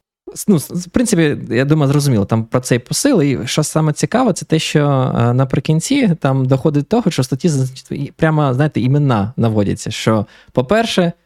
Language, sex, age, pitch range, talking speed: Ukrainian, male, 20-39, 115-150 Hz, 165 wpm